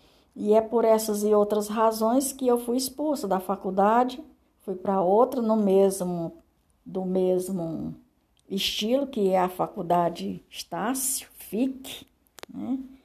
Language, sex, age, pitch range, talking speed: Portuguese, female, 60-79, 185-235 Hz, 125 wpm